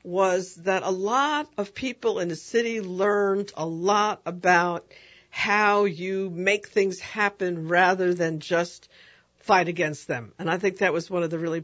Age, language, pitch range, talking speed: 60-79, English, 165-195 Hz, 170 wpm